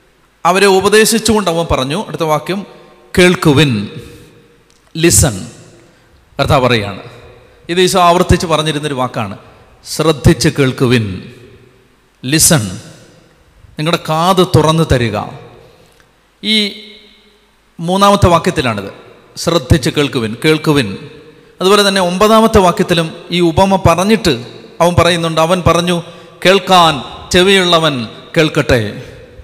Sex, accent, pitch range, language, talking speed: male, native, 155-190 Hz, Malayalam, 85 wpm